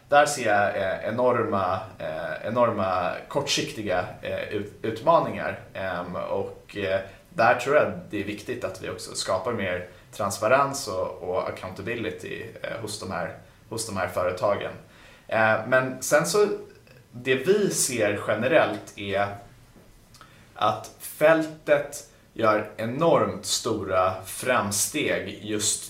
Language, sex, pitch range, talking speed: Swedish, male, 100-145 Hz, 100 wpm